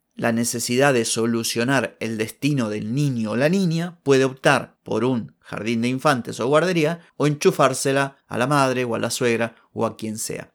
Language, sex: Spanish, male